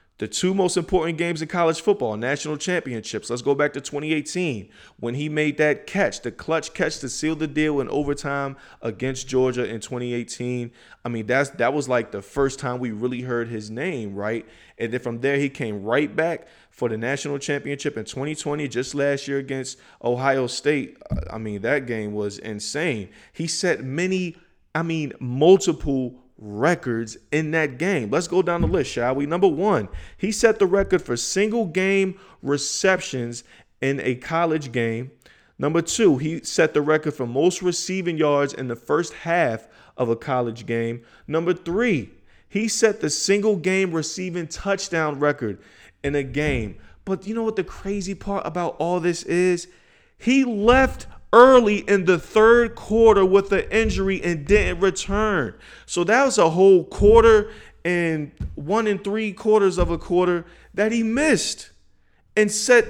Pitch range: 125-190 Hz